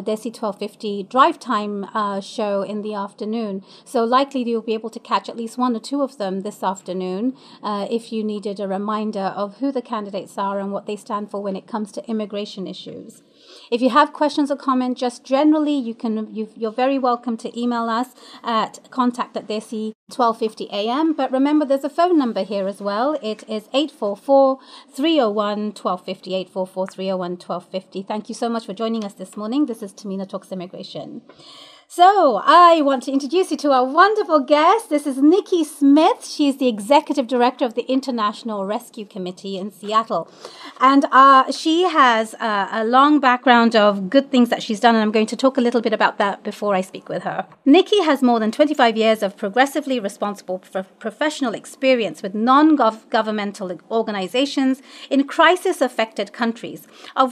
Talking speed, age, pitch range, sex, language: 180 wpm, 30-49, 205-275 Hz, female, English